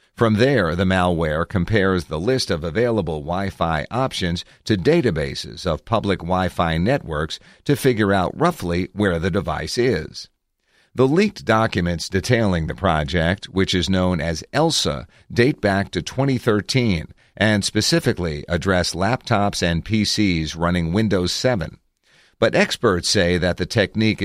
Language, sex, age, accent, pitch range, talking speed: English, male, 50-69, American, 85-110 Hz, 135 wpm